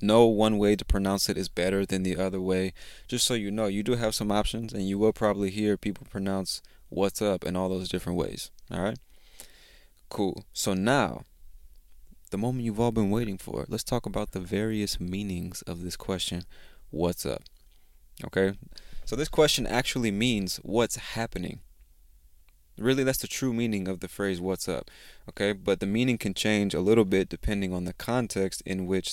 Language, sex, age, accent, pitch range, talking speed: English, male, 20-39, American, 90-110 Hz, 185 wpm